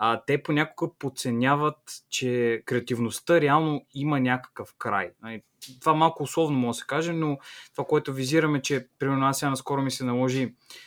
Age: 20-39